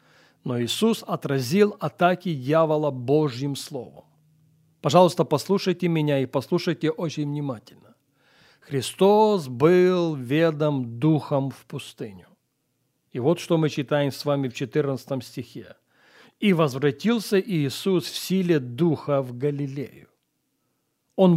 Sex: male